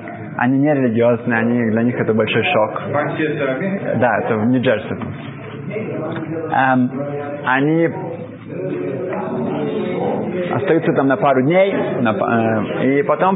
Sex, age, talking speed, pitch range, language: male, 20-39, 110 wpm, 125-175 Hz, Russian